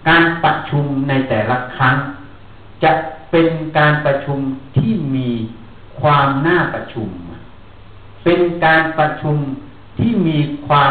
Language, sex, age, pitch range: Thai, male, 60-79, 110-165 Hz